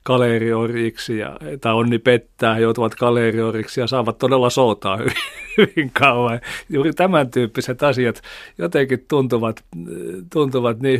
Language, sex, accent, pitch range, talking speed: Finnish, male, native, 115-135 Hz, 125 wpm